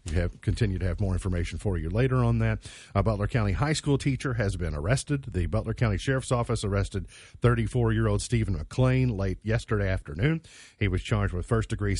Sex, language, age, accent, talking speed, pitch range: male, English, 40-59, American, 190 wpm, 95-120 Hz